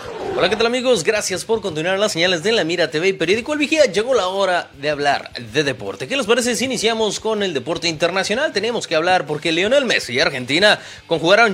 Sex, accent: male, Mexican